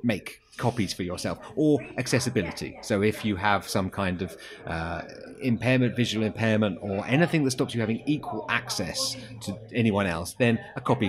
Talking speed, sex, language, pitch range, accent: 170 wpm, male, English, 95-120 Hz, British